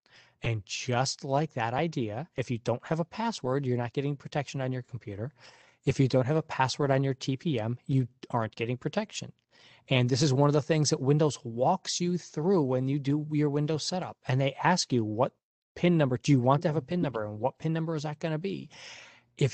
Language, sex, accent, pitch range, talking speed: English, male, American, 120-150 Hz, 225 wpm